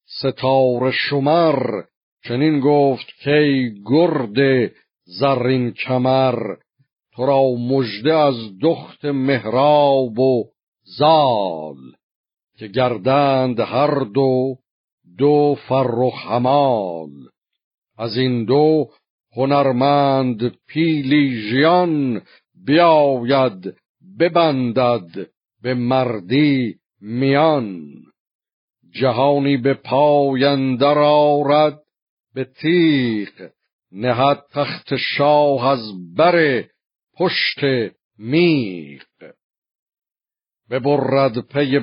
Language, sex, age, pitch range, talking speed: Persian, male, 50-69, 120-145 Hz, 70 wpm